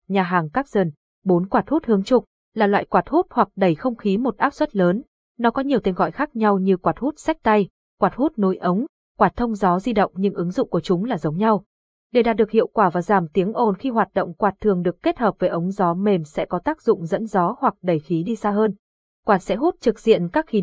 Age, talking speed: 20-39, 260 wpm